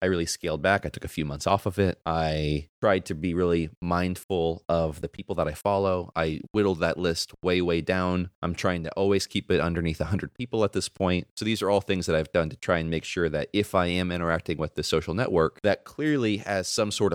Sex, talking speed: male, 245 wpm